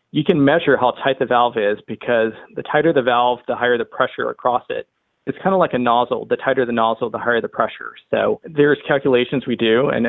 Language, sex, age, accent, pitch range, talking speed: English, male, 40-59, American, 115-140 Hz, 230 wpm